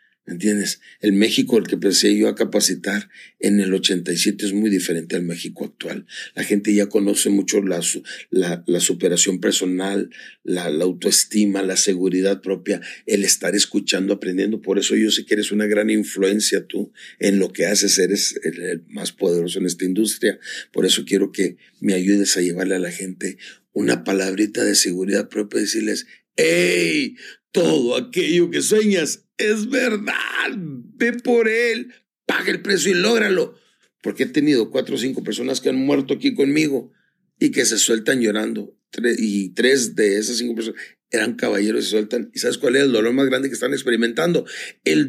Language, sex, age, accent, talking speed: English, male, 50-69, Mexican, 180 wpm